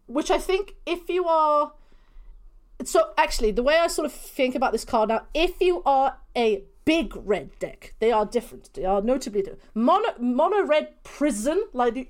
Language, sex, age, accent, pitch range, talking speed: English, female, 30-49, British, 215-290 Hz, 180 wpm